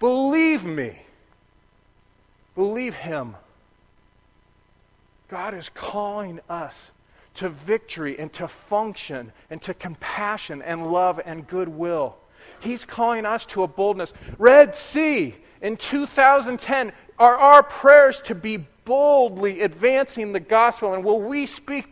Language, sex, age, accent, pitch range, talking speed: English, male, 40-59, American, 170-245 Hz, 120 wpm